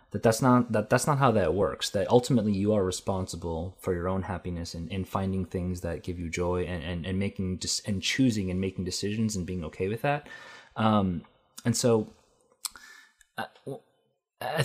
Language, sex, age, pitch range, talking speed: English, male, 20-39, 90-115 Hz, 185 wpm